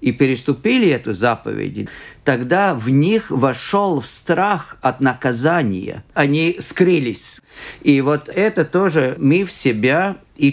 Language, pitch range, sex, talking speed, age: Russian, 130-170 Hz, male, 125 wpm, 50-69